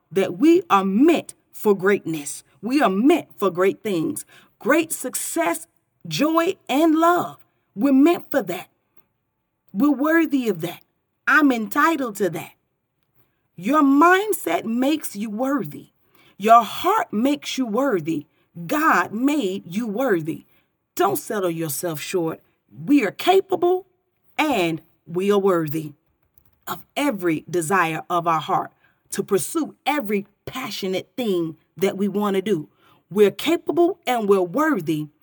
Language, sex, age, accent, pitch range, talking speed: English, female, 40-59, American, 175-290 Hz, 130 wpm